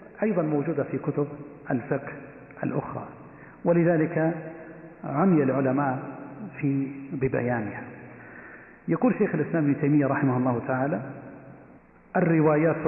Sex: male